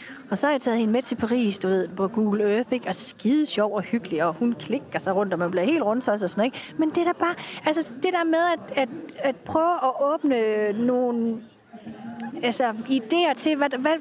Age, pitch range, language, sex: 30-49, 230-285 Hz, Danish, female